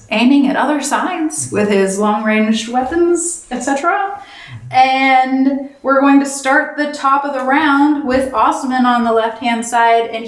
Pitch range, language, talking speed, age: 195-240 Hz, English, 150 wpm, 20-39